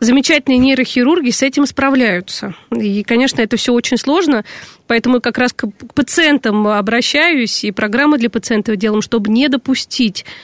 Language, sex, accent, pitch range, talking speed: Russian, female, native, 220-275 Hz, 150 wpm